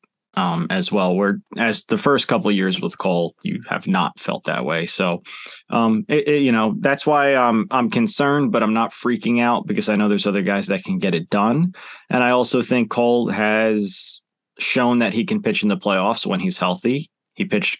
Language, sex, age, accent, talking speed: English, male, 30-49, American, 215 wpm